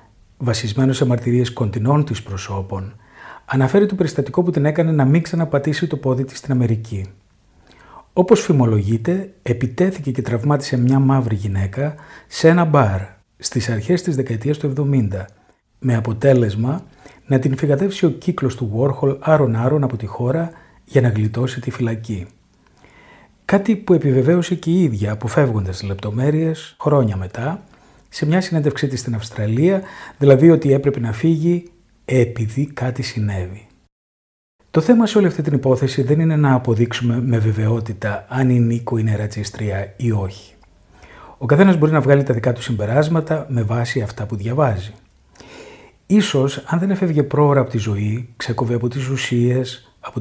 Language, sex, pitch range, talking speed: Greek, male, 110-150 Hz, 155 wpm